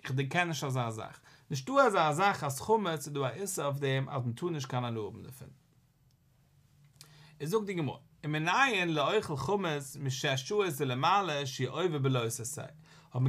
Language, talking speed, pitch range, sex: English, 115 wpm, 135-190 Hz, male